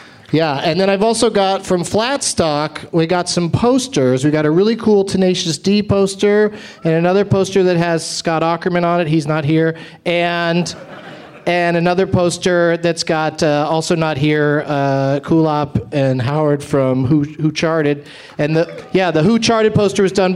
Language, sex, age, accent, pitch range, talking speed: English, male, 40-59, American, 150-190 Hz, 175 wpm